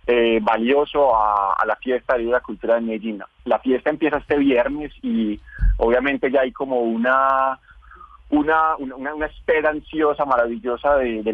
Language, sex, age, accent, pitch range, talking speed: Spanish, male, 30-49, Colombian, 115-140 Hz, 160 wpm